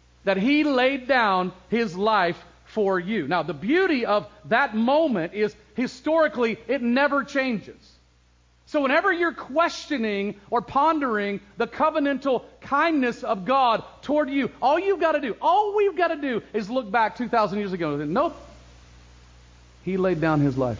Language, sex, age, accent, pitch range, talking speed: English, male, 40-59, American, 185-260 Hz, 160 wpm